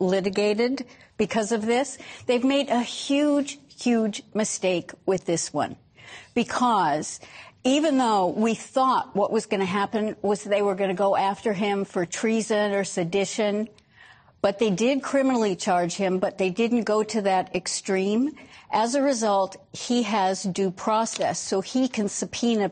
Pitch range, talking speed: 190-230 Hz, 155 wpm